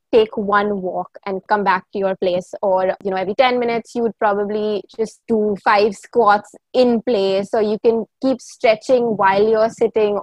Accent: Indian